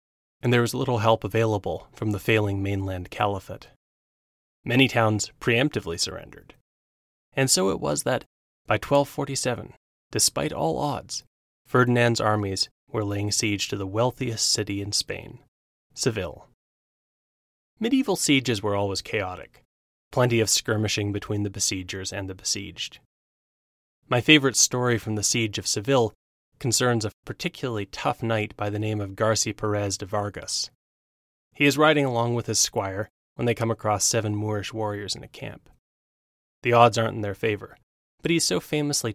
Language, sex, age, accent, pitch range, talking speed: English, male, 20-39, American, 100-125 Hz, 155 wpm